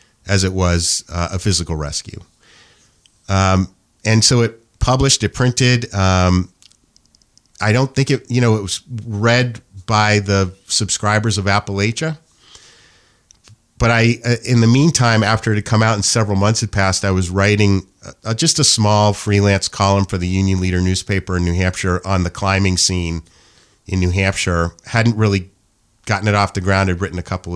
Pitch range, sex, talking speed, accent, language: 95-115 Hz, male, 175 wpm, American, English